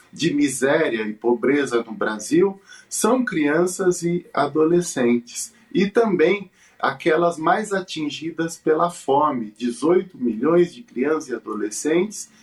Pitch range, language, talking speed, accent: 140-185 Hz, Portuguese, 110 wpm, Brazilian